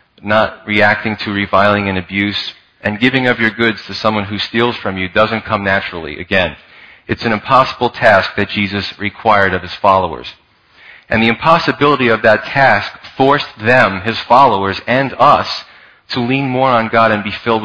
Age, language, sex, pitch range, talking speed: 40-59, English, male, 100-115 Hz, 175 wpm